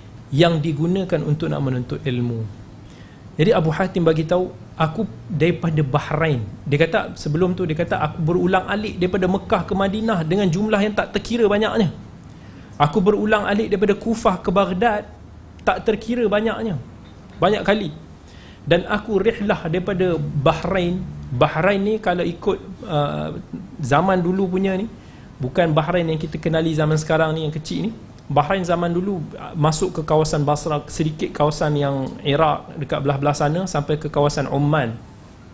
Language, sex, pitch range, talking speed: Malay, male, 145-195 Hz, 145 wpm